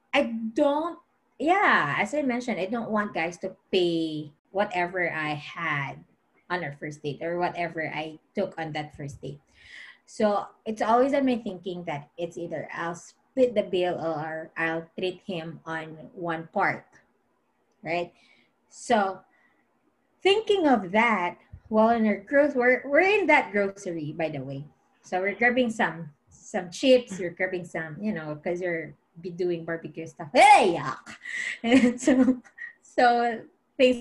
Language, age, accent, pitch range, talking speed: English, 20-39, Filipino, 170-265 Hz, 155 wpm